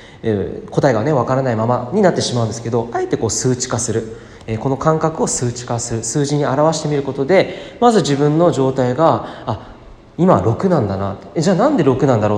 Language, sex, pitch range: Japanese, male, 115-170 Hz